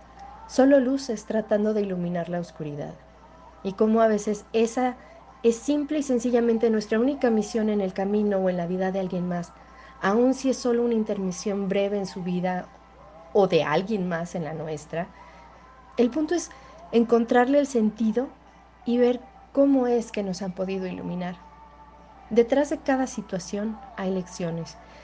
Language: Spanish